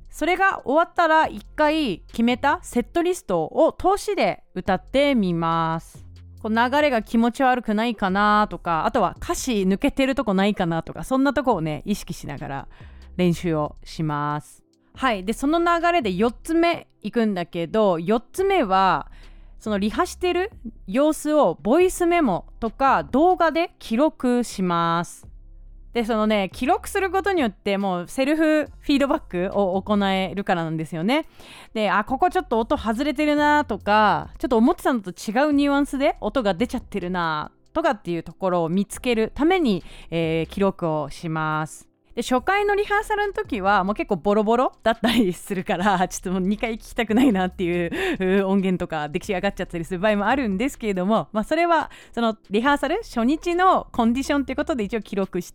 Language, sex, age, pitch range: Japanese, female, 30-49, 185-290 Hz